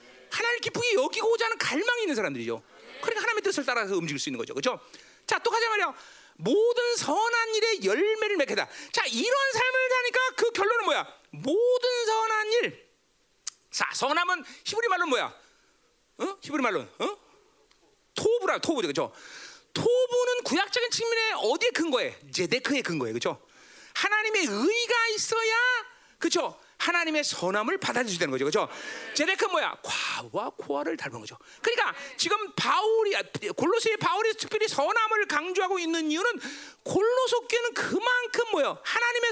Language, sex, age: Korean, male, 40-59